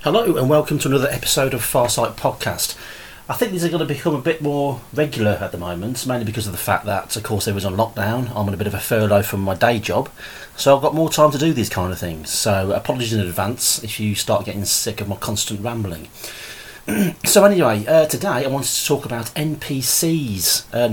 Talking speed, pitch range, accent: 230 wpm, 105-130 Hz, British